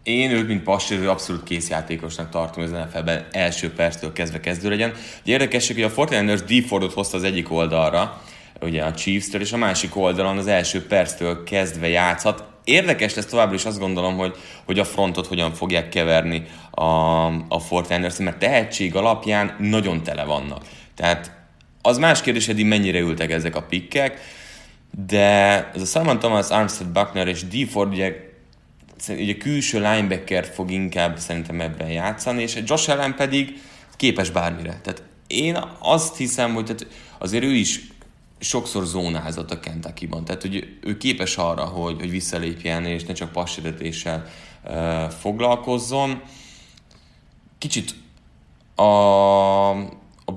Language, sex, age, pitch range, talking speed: Hungarian, male, 30-49, 85-105 Hz, 145 wpm